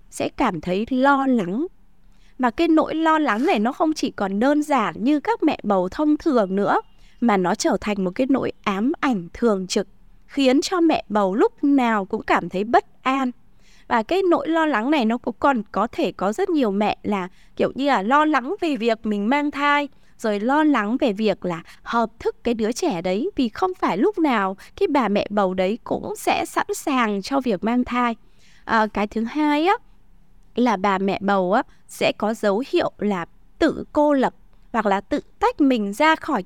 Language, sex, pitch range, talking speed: Vietnamese, female, 205-300 Hz, 210 wpm